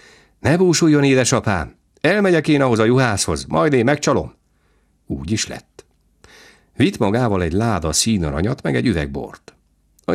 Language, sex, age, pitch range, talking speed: Hungarian, male, 50-69, 75-100 Hz, 135 wpm